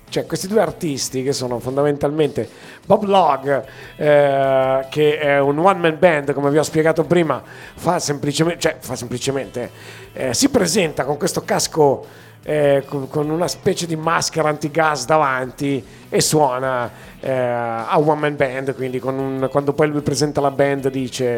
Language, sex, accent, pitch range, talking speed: Italian, male, native, 140-175 Hz, 155 wpm